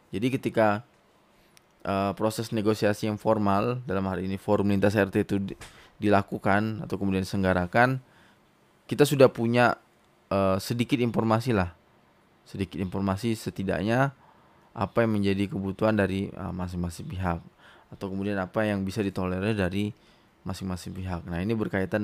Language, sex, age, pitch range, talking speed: Indonesian, male, 20-39, 95-115 Hz, 130 wpm